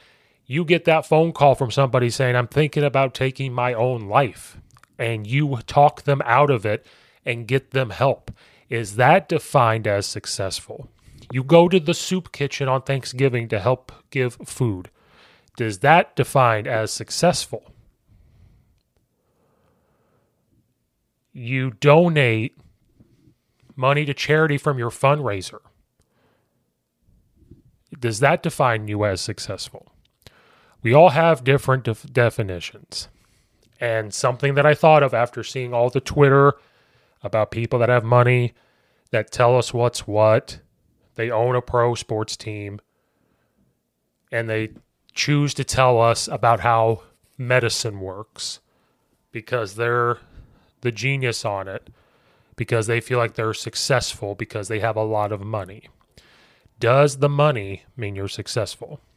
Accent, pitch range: American, 110-140 Hz